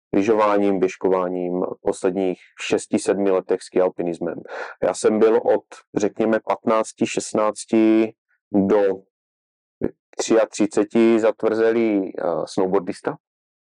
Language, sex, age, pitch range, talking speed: Czech, male, 30-49, 100-110 Hz, 80 wpm